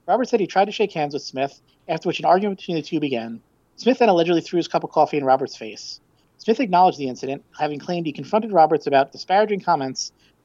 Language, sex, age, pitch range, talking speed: English, male, 40-59, 140-175 Hz, 235 wpm